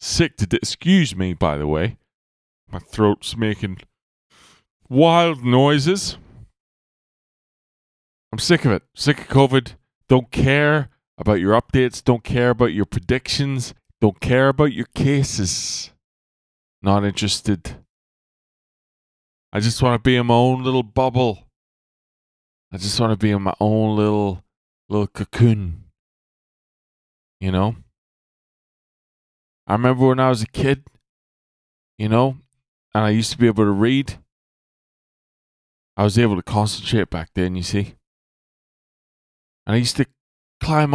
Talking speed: 130 wpm